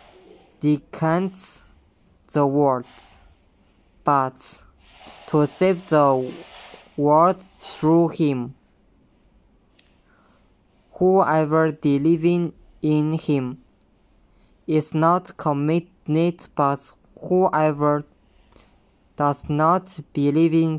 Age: 20-39